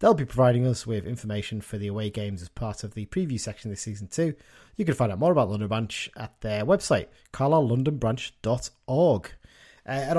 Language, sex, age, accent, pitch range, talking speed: English, male, 30-49, British, 105-140 Hz, 190 wpm